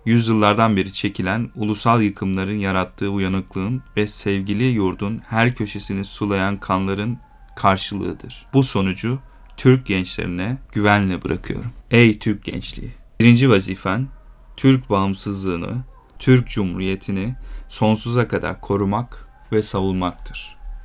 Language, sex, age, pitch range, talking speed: Turkish, male, 40-59, 95-115 Hz, 100 wpm